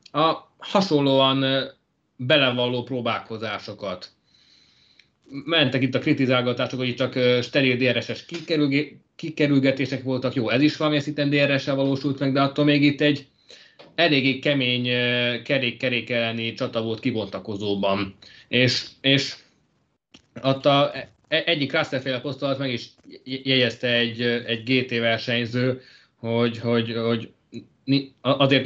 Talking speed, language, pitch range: 110 wpm, Hungarian, 120-135 Hz